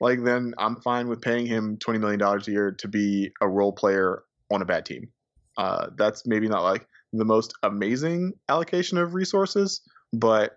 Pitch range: 105-125 Hz